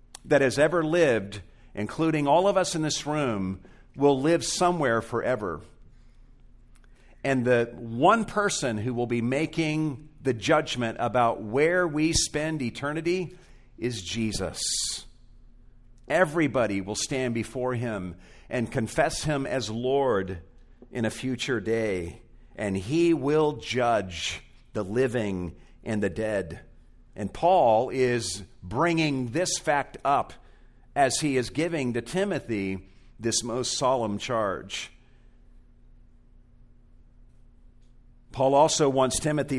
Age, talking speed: 50-69, 115 wpm